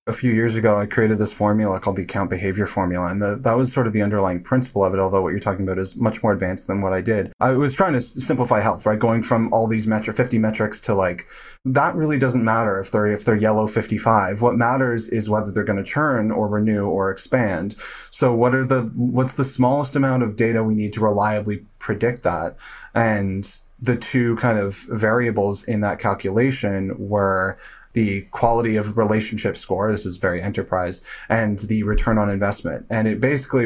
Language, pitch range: English, 100-120 Hz